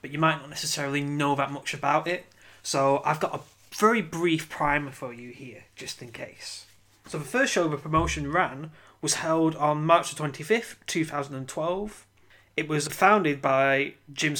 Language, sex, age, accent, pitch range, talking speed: English, male, 20-39, British, 135-165 Hz, 170 wpm